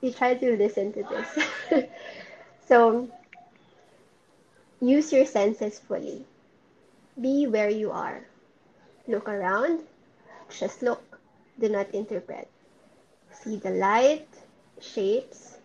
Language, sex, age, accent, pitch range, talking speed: English, female, 20-39, Filipino, 210-255 Hz, 100 wpm